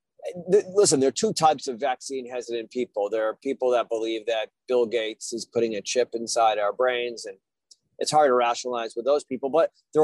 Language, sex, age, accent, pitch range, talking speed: English, male, 30-49, American, 125-180 Hz, 205 wpm